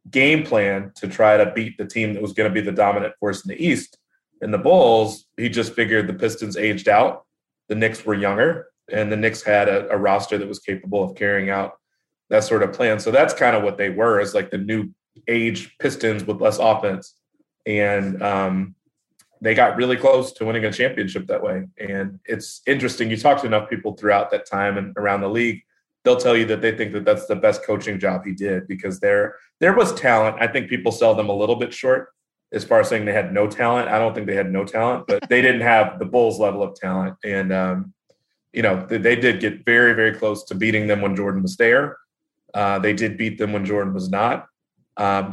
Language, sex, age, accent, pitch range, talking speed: English, male, 30-49, American, 100-115 Hz, 230 wpm